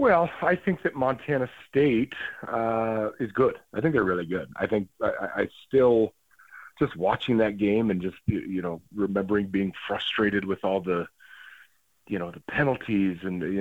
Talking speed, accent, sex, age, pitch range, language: 170 wpm, American, male, 40-59, 95-110 Hz, English